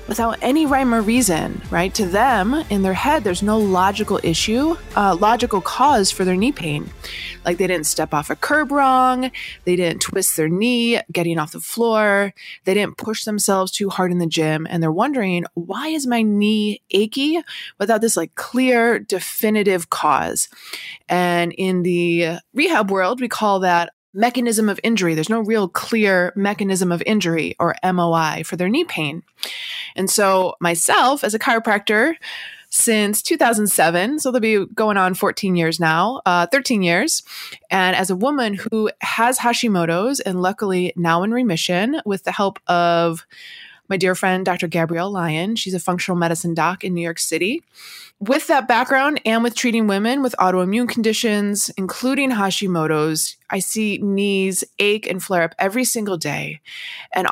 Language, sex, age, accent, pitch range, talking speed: English, female, 20-39, American, 180-235 Hz, 165 wpm